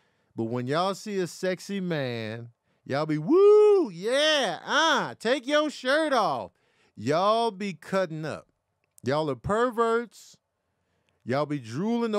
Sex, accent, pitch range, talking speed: male, American, 130-205 Hz, 130 wpm